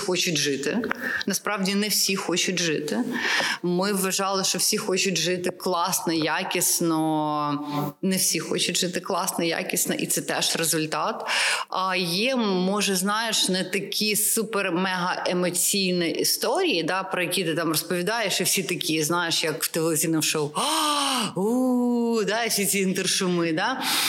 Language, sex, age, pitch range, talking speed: Ukrainian, female, 30-49, 160-195 Hz, 130 wpm